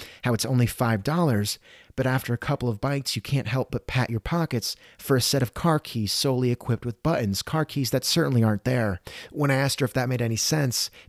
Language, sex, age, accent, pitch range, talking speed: English, male, 30-49, American, 110-140 Hz, 225 wpm